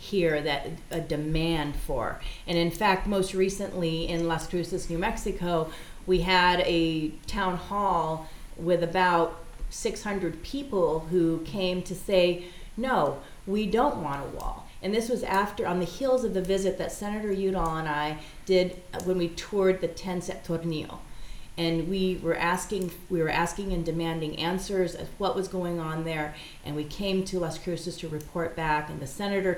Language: English